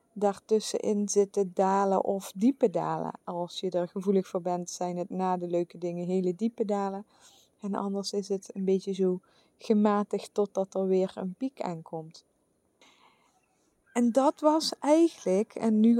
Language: English